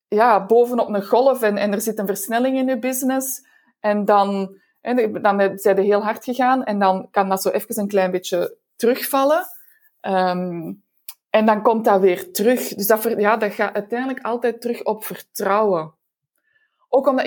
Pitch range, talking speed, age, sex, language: 200-240 Hz, 165 wpm, 20-39, female, Dutch